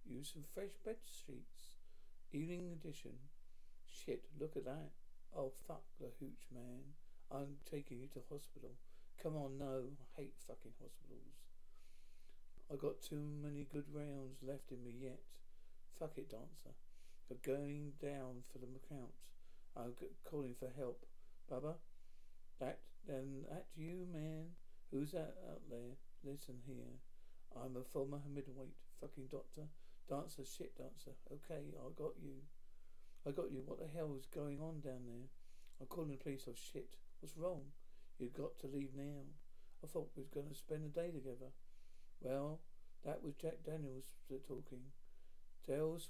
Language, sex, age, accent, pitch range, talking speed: English, male, 50-69, British, 125-150 Hz, 155 wpm